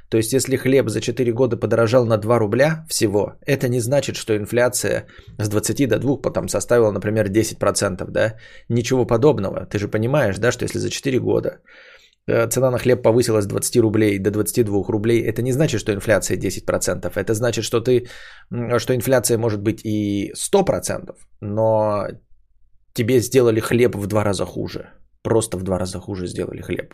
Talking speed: 175 wpm